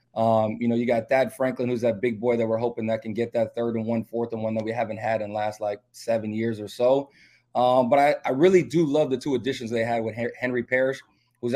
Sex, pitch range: male, 115-135 Hz